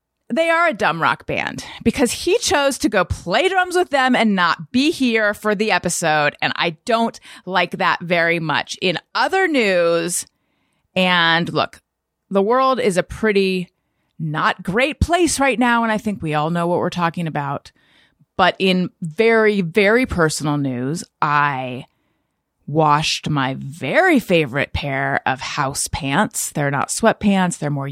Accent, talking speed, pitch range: American, 160 wpm, 150-220 Hz